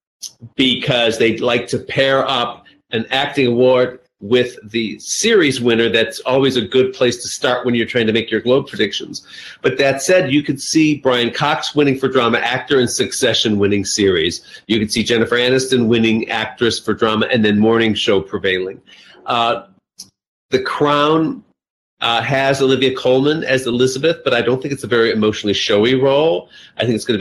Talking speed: 180 wpm